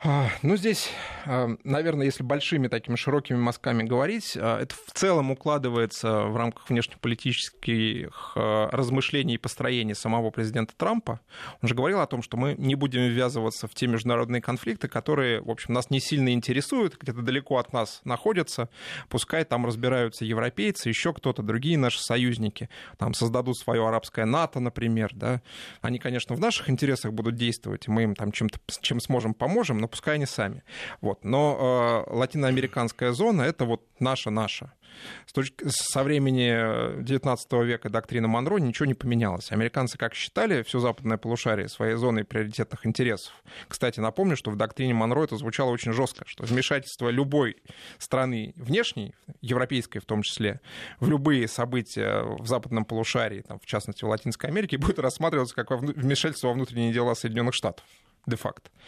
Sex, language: male, Russian